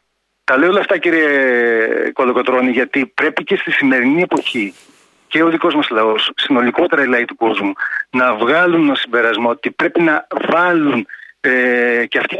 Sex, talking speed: male, 160 wpm